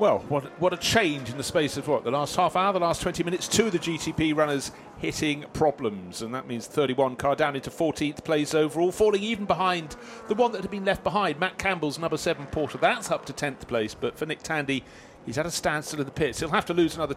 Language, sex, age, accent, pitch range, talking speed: English, male, 40-59, British, 135-175 Hz, 250 wpm